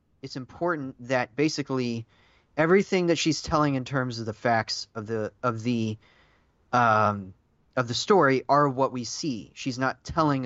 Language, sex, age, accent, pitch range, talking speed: English, male, 30-49, American, 115-140 Hz, 160 wpm